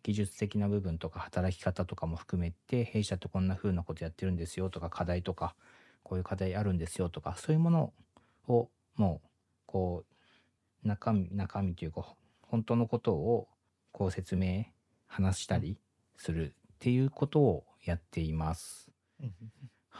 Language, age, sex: Japanese, 40-59, male